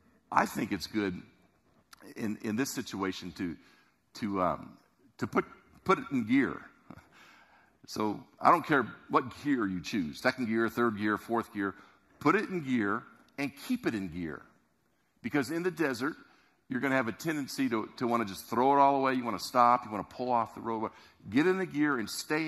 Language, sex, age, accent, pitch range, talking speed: English, male, 50-69, American, 110-150 Hz, 200 wpm